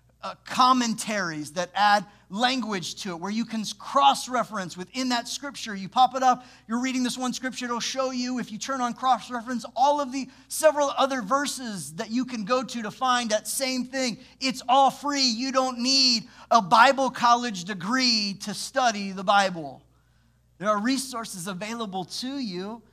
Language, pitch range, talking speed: English, 200-250 Hz, 175 wpm